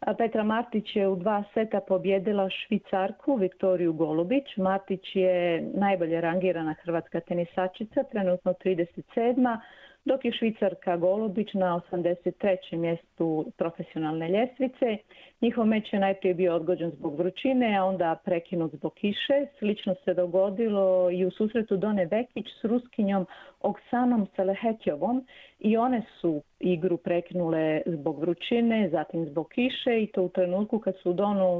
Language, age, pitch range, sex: Croatian, 40-59, 180-220 Hz, female